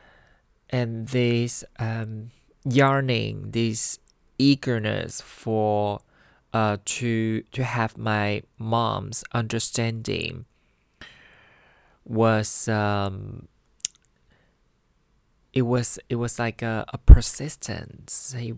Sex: male